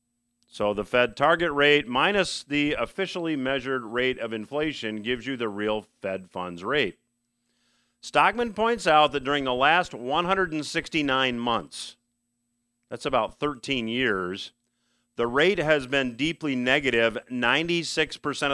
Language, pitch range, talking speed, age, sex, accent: English, 120-145 Hz, 125 wpm, 40-59, male, American